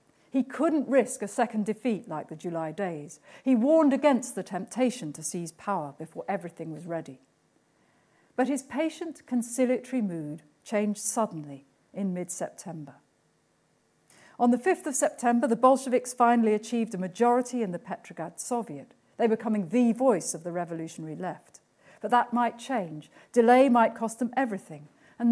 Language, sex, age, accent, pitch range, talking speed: English, female, 50-69, British, 170-255 Hz, 155 wpm